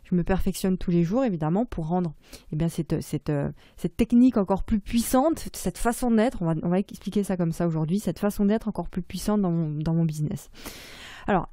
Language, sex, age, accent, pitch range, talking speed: French, female, 20-39, French, 175-220 Hz, 195 wpm